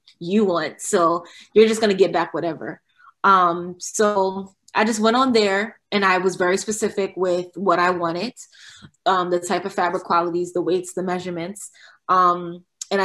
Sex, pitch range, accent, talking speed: female, 170-190 Hz, American, 175 wpm